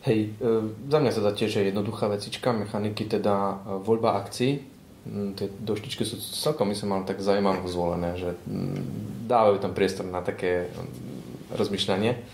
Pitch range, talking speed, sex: 100-125 Hz, 145 wpm, male